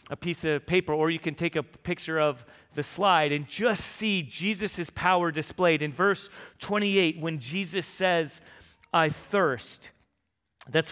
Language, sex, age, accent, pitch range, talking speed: English, male, 30-49, American, 140-180 Hz, 155 wpm